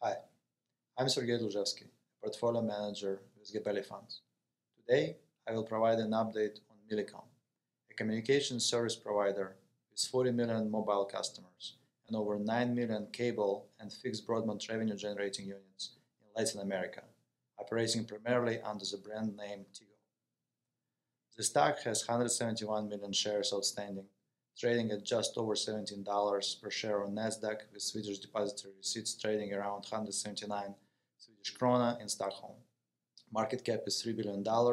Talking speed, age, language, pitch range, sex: 135 wpm, 20-39, English, 100-115 Hz, male